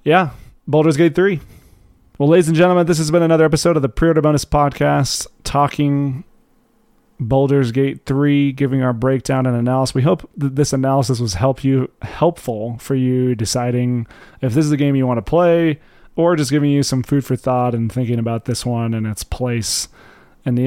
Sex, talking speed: male, 190 wpm